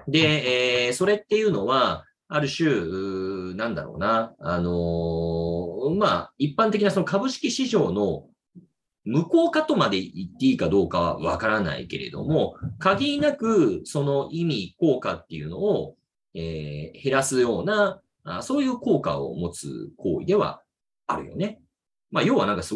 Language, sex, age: Japanese, male, 30-49